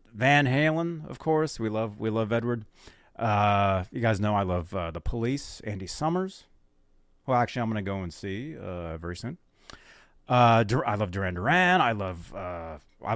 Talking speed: 180 wpm